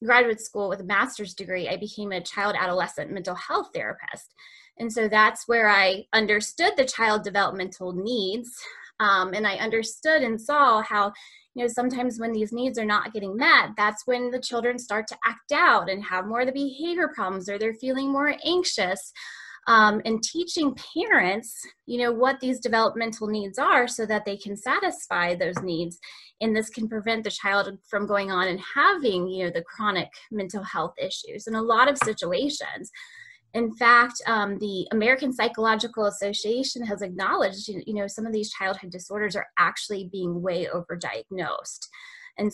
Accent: American